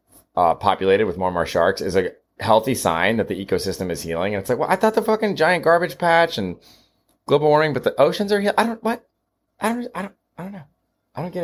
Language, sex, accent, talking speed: English, male, American, 250 wpm